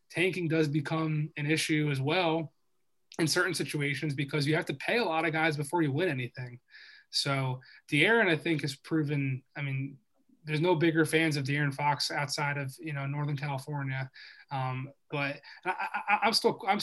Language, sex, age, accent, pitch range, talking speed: English, male, 20-39, American, 140-160 Hz, 180 wpm